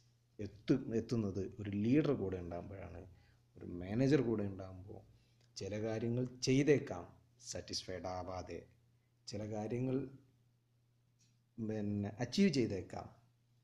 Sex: male